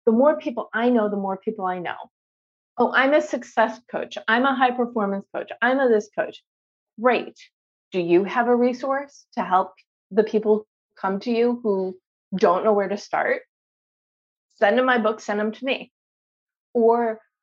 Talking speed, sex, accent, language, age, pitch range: 180 wpm, female, American, English, 30-49, 195-235 Hz